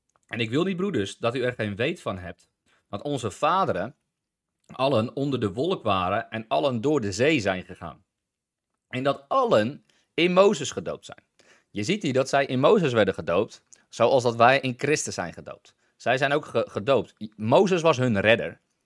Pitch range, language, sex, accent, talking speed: 110-155 Hz, English, male, Dutch, 185 wpm